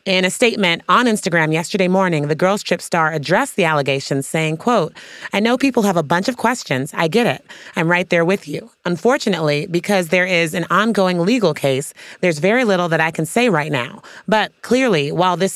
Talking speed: 205 wpm